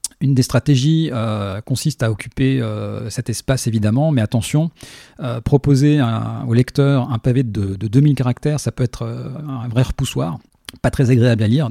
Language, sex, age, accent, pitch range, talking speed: French, male, 40-59, French, 115-130 Hz, 175 wpm